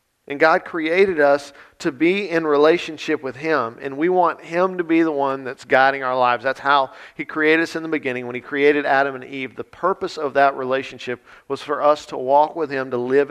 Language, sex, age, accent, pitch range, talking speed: English, male, 50-69, American, 130-155 Hz, 225 wpm